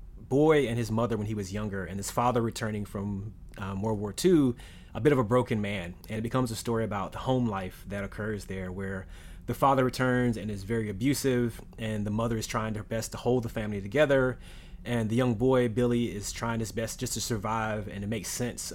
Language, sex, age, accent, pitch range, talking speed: English, male, 30-49, American, 100-125 Hz, 225 wpm